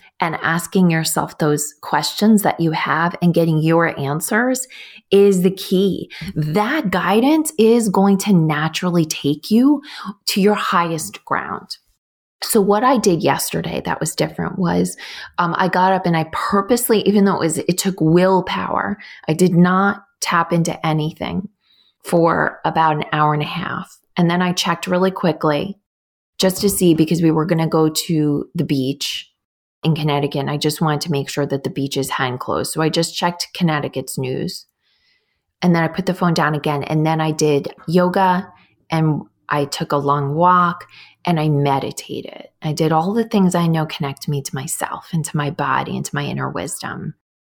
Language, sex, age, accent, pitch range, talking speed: English, female, 30-49, American, 150-190 Hz, 180 wpm